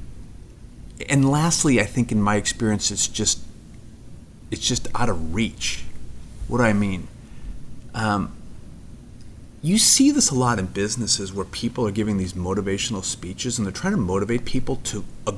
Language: English